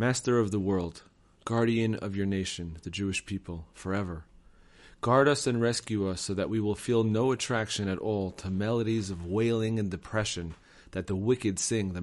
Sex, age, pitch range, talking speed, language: male, 30-49, 95-115 Hz, 185 wpm, English